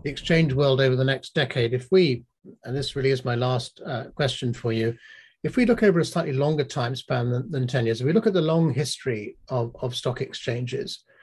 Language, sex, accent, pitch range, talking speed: English, male, British, 120-140 Hz, 230 wpm